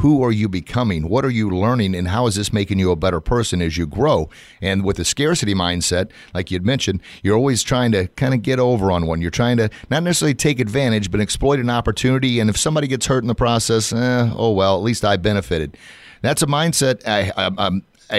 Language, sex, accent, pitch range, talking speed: English, male, American, 100-130 Hz, 225 wpm